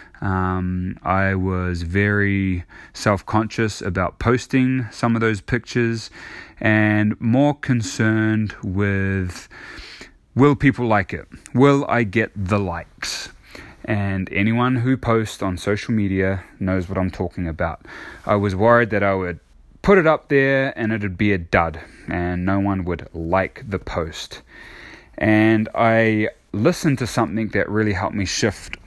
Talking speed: 145 wpm